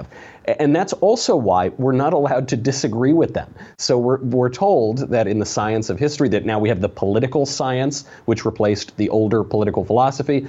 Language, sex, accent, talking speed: English, male, American, 195 wpm